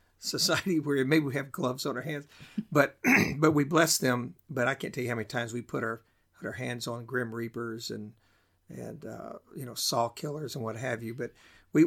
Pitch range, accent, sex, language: 120-140 Hz, American, male, English